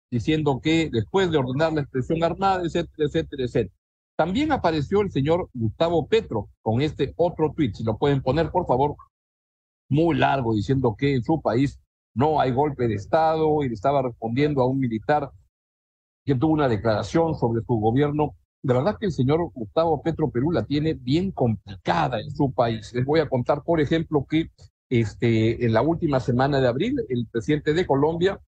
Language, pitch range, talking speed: Spanish, 120-165 Hz, 180 wpm